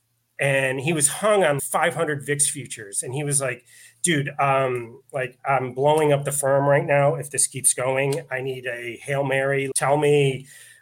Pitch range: 130-165 Hz